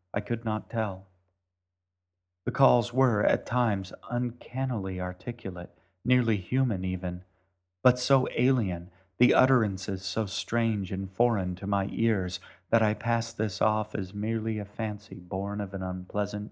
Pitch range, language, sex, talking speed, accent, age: 90-110 Hz, English, male, 140 wpm, American, 40-59